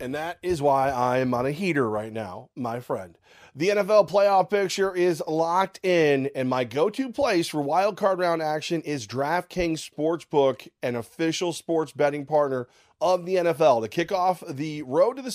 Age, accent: 30-49, American